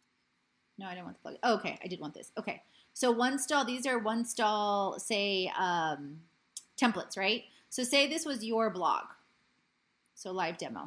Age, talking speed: 20-39, 175 wpm